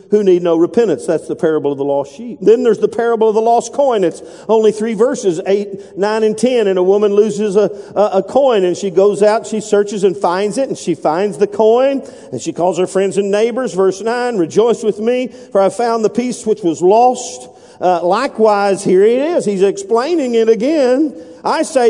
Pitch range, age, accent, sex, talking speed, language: 205-245 Hz, 50-69, American, male, 220 wpm, English